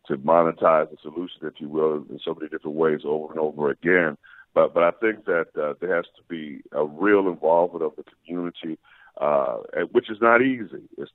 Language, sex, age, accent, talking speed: English, male, 50-69, American, 210 wpm